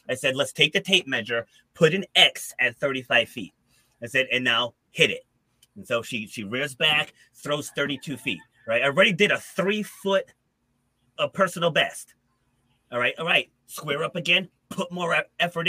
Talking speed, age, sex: 175 wpm, 30-49, male